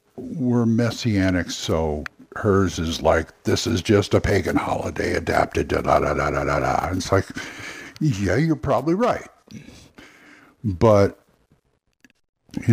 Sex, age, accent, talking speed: male, 60-79, American, 130 wpm